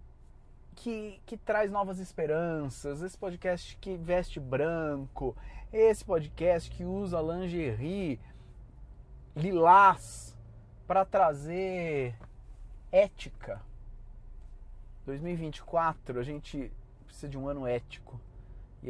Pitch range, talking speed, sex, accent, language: 110-150 Hz, 90 wpm, male, Brazilian, Portuguese